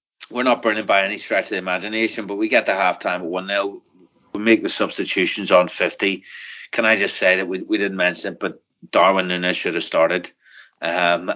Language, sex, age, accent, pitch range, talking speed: English, male, 30-49, Irish, 100-120 Hz, 210 wpm